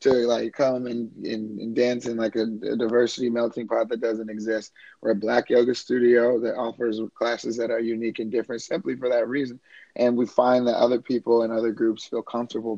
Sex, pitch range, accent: male, 110-125 Hz, American